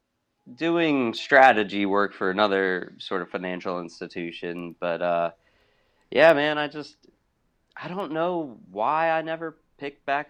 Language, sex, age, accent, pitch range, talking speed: English, male, 20-39, American, 95-120 Hz, 135 wpm